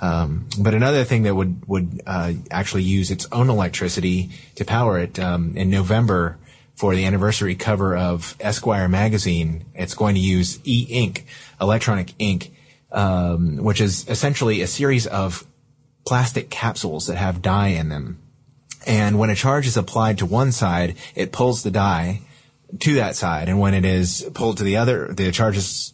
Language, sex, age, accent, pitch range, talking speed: English, male, 30-49, American, 90-115 Hz, 170 wpm